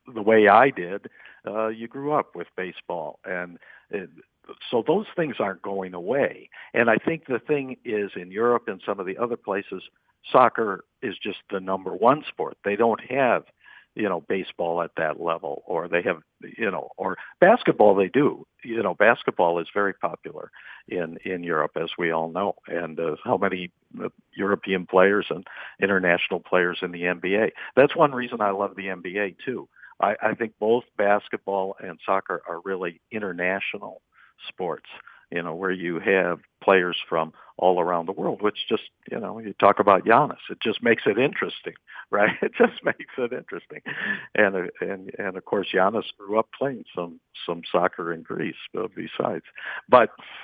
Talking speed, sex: 175 wpm, male